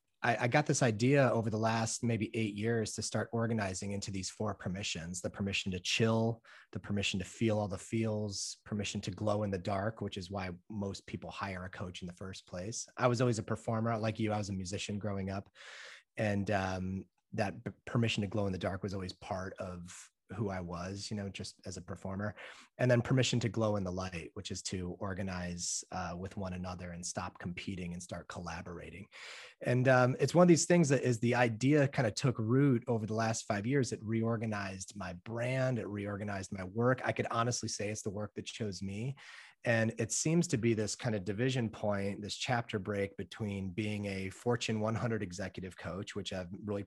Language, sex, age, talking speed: English, male, 30-49, 210 wpm